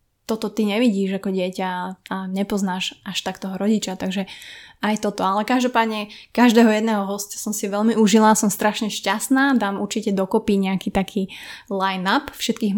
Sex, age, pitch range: female, 20-39, 195-225 Hz